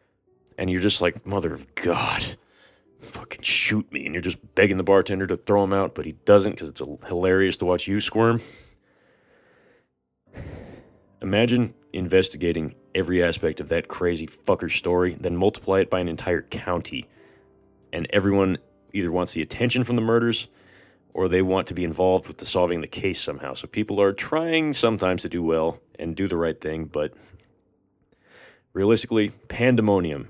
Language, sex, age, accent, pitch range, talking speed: English, male, 30-49, American, 90-110 Hz, 165 wpm